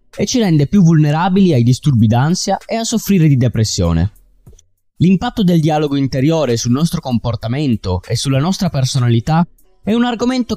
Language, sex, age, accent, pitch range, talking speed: Italian, male, 20-39, native, 125-195 Hz, 155 wpm